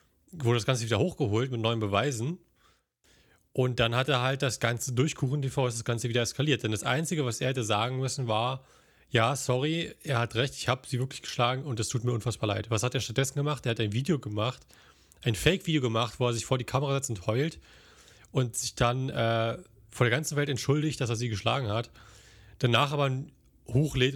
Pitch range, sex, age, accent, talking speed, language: 110-130 Hz, male, 30-49, German, 215 wpm, German